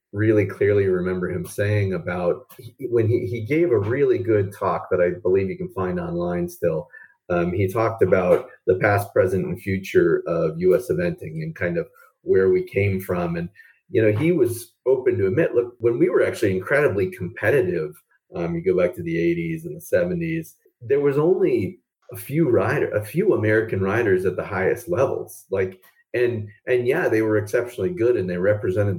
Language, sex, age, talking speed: English, male, 30-49, 190 wpm